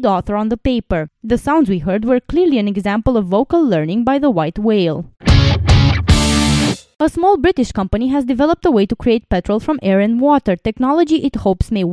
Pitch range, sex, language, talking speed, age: 200-280 Hz, female, English, 190 wpm, 20-39